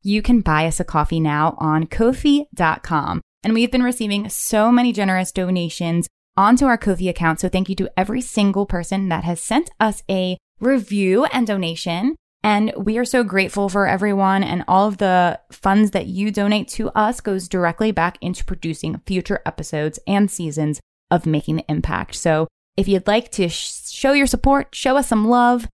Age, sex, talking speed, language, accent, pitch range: 20-39, female, 185 wpm, English, American, 170-220 Hz